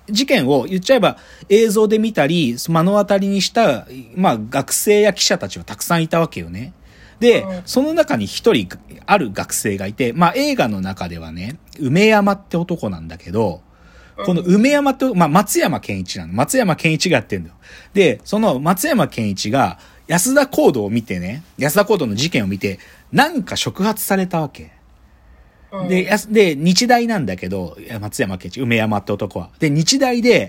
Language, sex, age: Japanese, male, 40-59